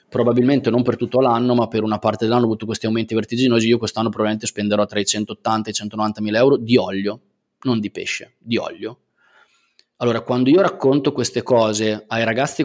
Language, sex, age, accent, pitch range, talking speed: Italian, male, 20-39, native, 110-125 Hz, 200 wpm